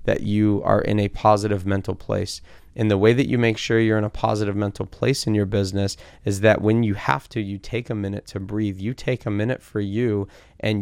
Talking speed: 240 wpm